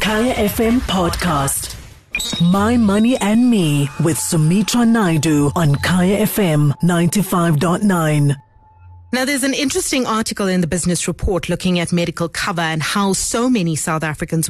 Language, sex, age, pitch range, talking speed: English, female, 30-49, 165-210 Hz, 135 wpm